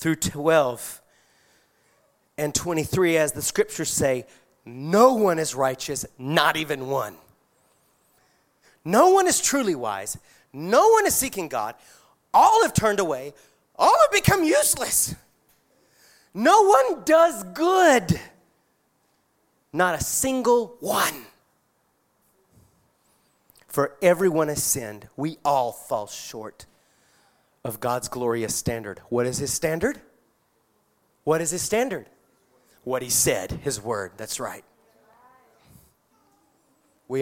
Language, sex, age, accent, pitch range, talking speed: English, male, 30-49, American, 140-210 Hz, 110 wpm